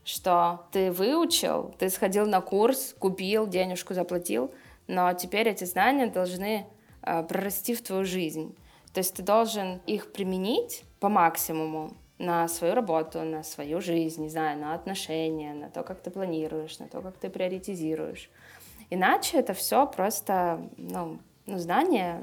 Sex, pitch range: female, 165-200 Hz